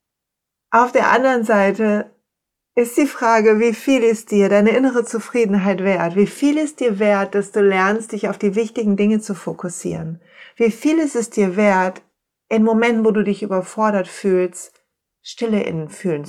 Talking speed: 170 wpm